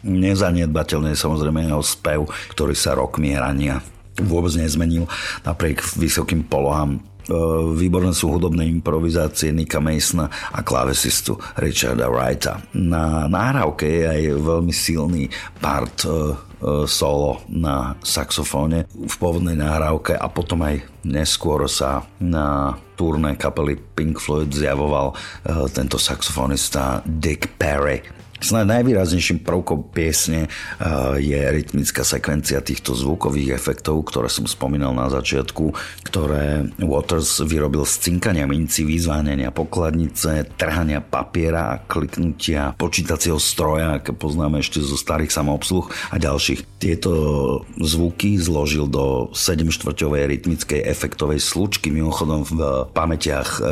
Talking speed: 115 wpm